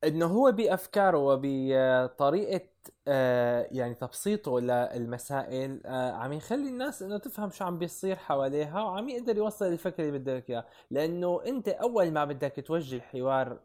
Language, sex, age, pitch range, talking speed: Arabic, male, 20-39, 130-190 Hz, 140 wpm